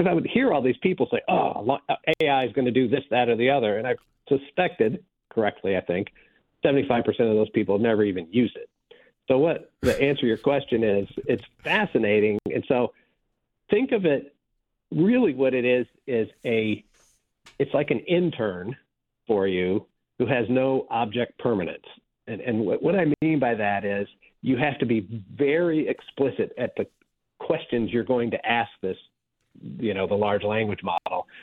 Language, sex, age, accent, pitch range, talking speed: English, male, 50-69, American, 105-140 Hz, 180 wpm